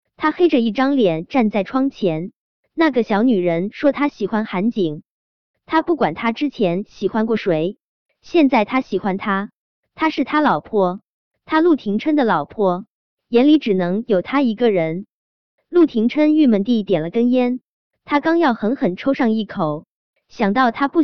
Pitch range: 195-285 Hz